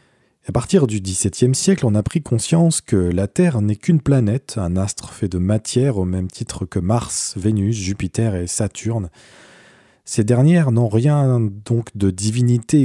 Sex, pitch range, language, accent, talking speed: male, 100-135 Hz, French, French, 170 wpm